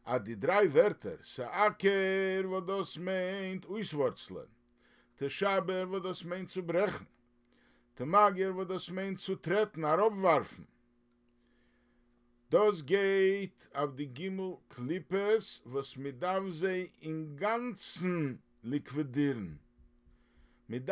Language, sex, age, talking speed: English, male, 50-69, 95 wpm